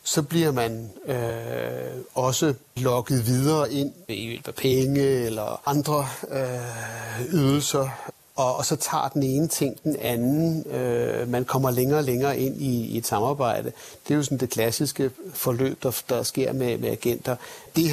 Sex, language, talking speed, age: male, Danish, 160 wpm, 60-79